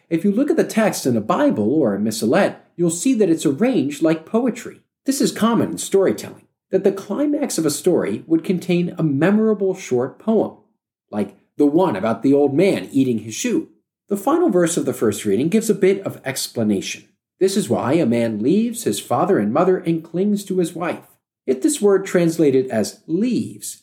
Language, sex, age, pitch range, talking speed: English, male, 50-69, 150-220 Hz, 200 wpm